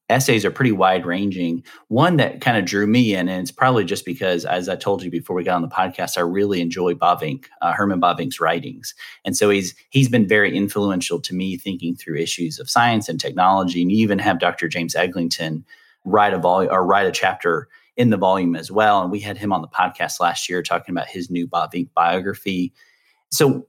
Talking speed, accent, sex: 225 wpm, American, male